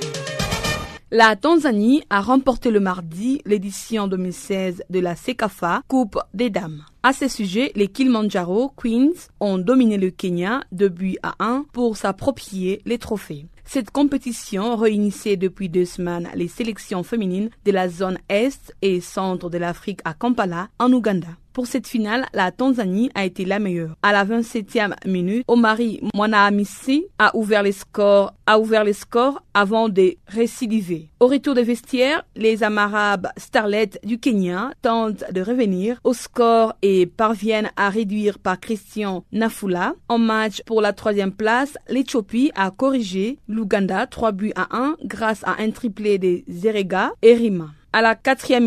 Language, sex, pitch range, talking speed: French, female, 195-240 Hz, 155 wpm